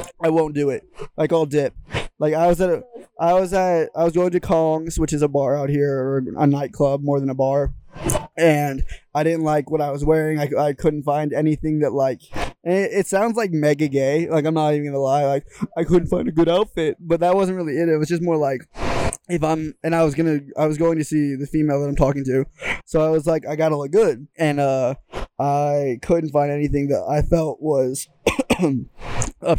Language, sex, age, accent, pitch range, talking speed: English, male, 20-39, American, 145-165 Hz, 230 wpm